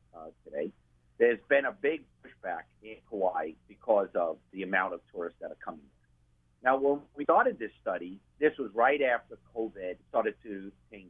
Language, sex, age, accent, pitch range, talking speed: English, male, 50-69, American, 80-130 Hz, 180 wpm